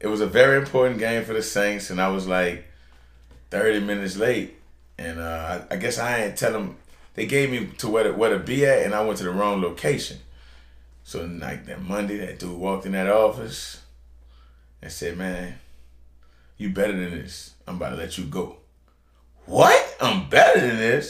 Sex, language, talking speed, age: male, English, 200 wpm, 30-49